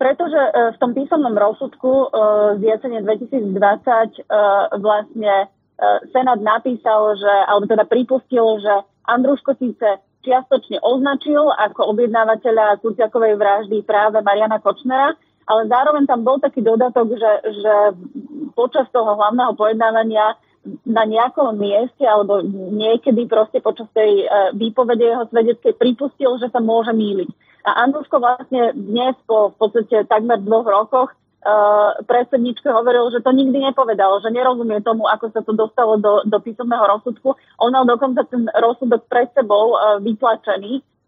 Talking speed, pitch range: 135 wpm, 210-245 Hz